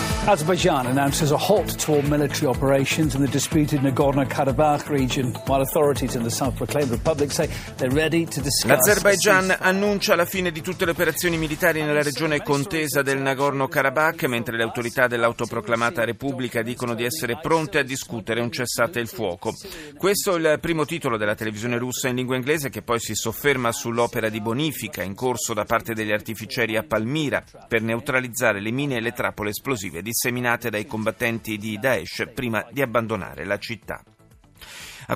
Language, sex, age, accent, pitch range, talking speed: Italian, male, 40-59, native, 110-145 Hz, 130 wpm